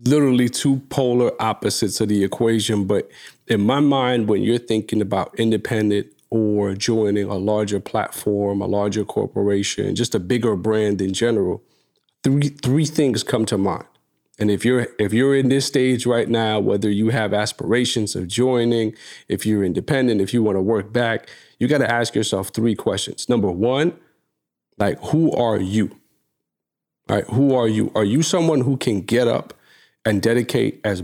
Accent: American